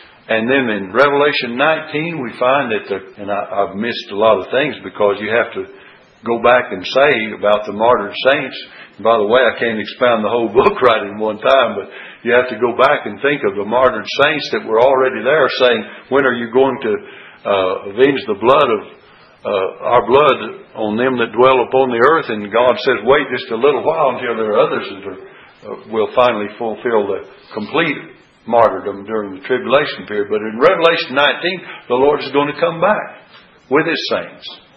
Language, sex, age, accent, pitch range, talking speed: English, male, 60-79, American, 120-160 Hz, 205 wpm